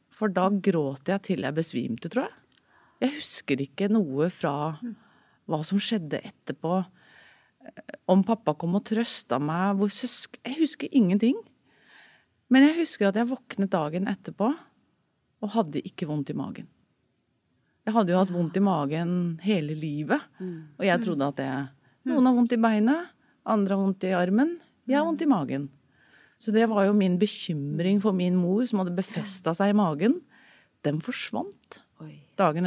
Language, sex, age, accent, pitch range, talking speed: English, female, 30-49, Swedish, 170-240 Hz, 160 wpm